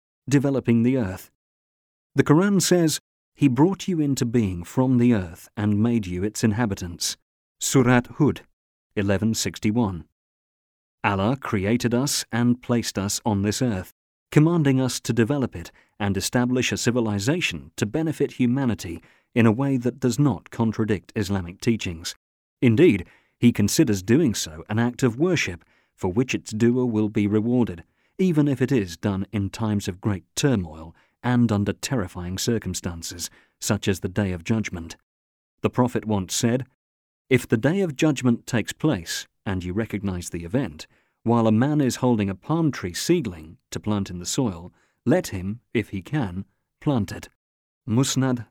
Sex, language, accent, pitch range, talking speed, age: male, English, British, 95-125 Hz, 155 wpm, 40-59